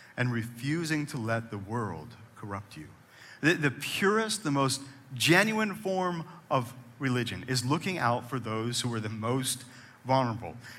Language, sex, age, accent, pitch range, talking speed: English, male, 50-69, American, 120-155 Hz, 150 wpm